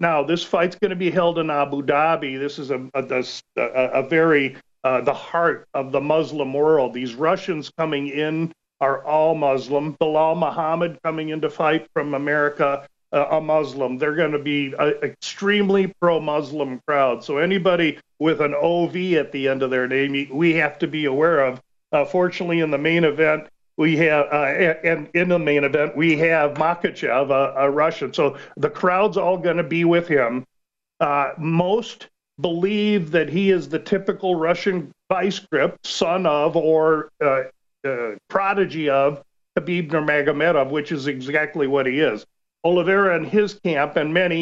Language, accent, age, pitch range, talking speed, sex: English, American, 50-69, 145-175 Hz, 170 wpm, male